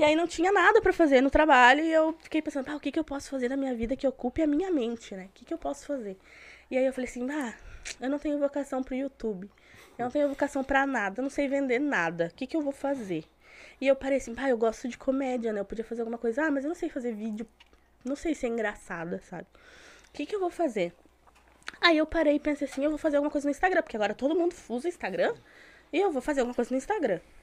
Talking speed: 275 wpm